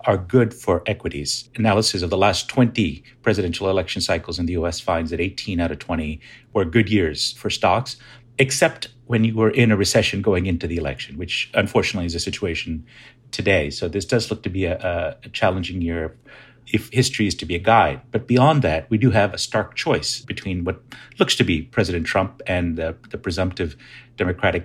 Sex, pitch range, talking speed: male, 85-110 Hz, 195 wpm